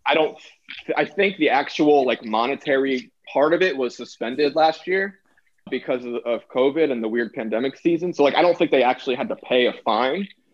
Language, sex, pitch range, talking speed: English, male, 115-160 Hz, 205 wpm